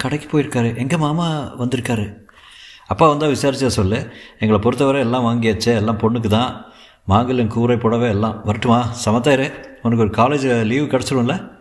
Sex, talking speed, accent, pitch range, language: male, 140 wpm, native, 105-135 Hz, Tamil